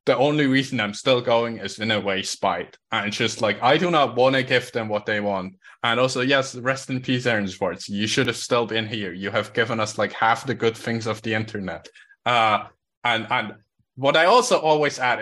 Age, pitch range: 20-39, 110-135 Hz